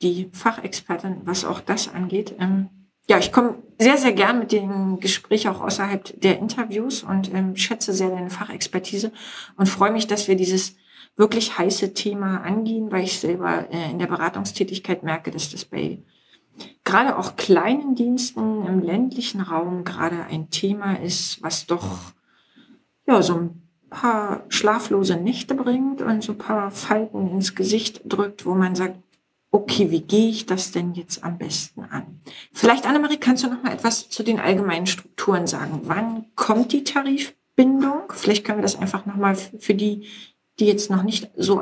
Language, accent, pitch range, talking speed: German, German, 180-220 Hz, 165 wpm